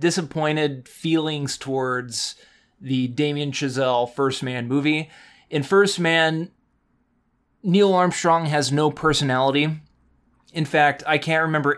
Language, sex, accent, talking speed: English, male, American, 110 wpm